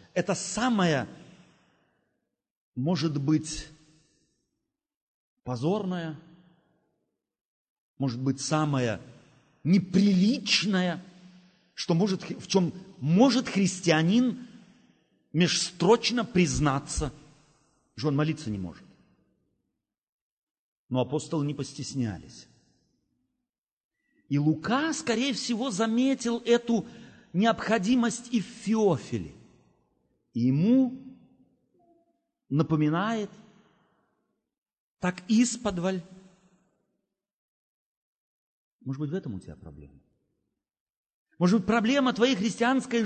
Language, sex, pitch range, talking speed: Russian, male, 160-250 Hz, 70 wpm